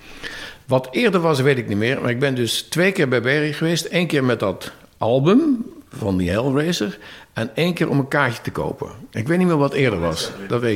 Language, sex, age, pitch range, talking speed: Dutch, male, 50-69, 95-145 Hz, 230 wpm